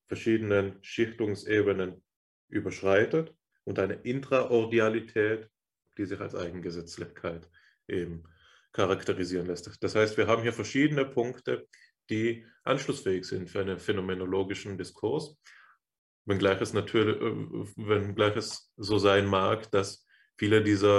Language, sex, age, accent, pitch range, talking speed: German, male, 20-39, German, 95-105 Hz, 105 wpm